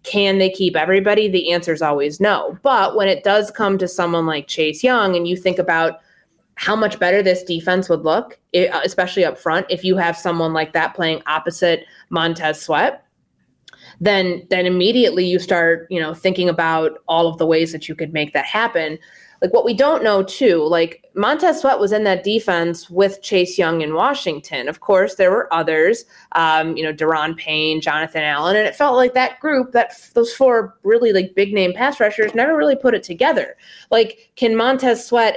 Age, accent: 20-39, American